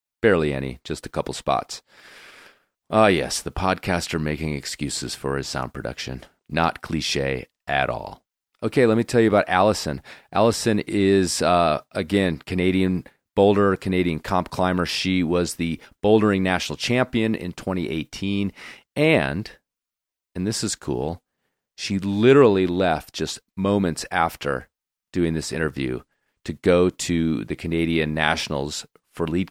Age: 40-59